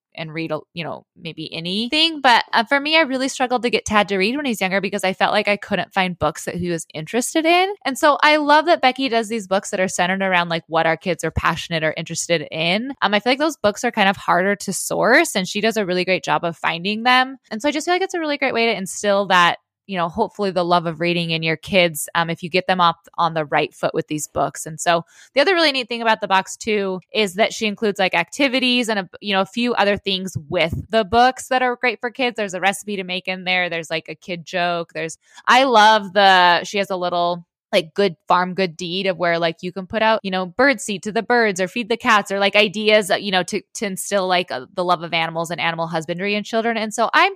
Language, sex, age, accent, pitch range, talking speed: English, female, 20-39, American, 170-225 Hz, 265 wpm